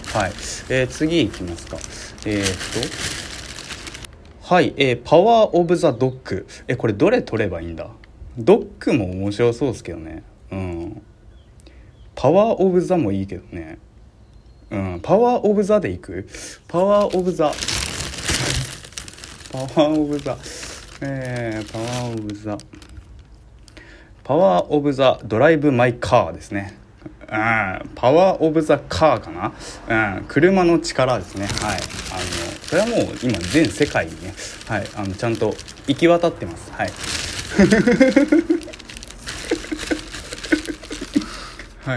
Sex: male